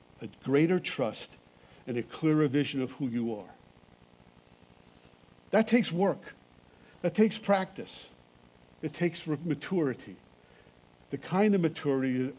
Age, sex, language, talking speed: 50-69, male, English, 120 wpm